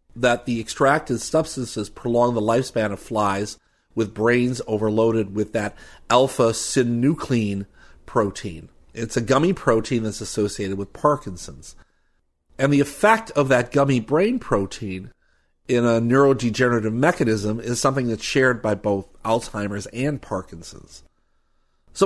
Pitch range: 100-125 Hz